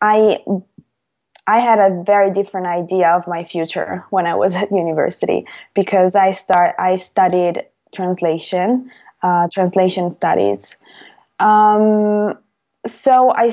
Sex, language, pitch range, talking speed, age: female, English, 180-205 Hz, 120 wpm, 20-39